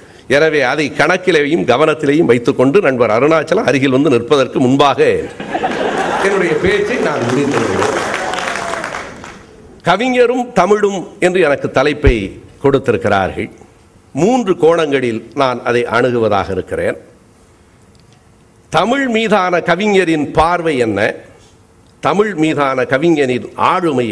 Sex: male